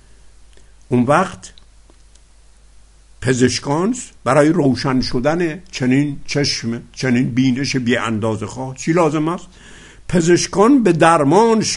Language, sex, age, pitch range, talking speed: Persian, male, 60-79, 110-180 Hz, 95 wpm